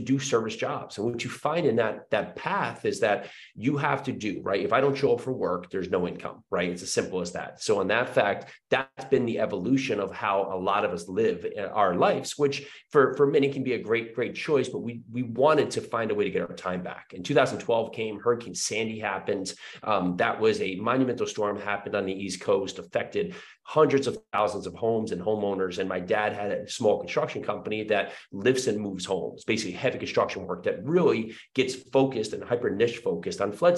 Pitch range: 105-145 Hz